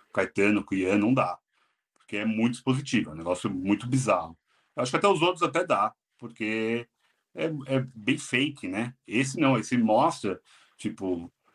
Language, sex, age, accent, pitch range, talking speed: Portuguese, male, 40-59, Brazilian, 110-150 Hz, 165 wpm